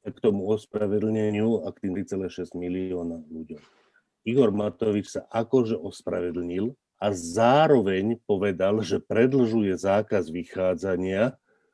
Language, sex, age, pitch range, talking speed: Slovak, male, 40-59, 95-115 Hz, 105 wpm